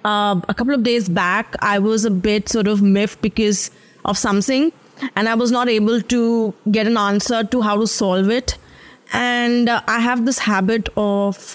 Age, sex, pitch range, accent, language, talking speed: 20-39, female, 205-250 Hz, Indian, English, 185 wpm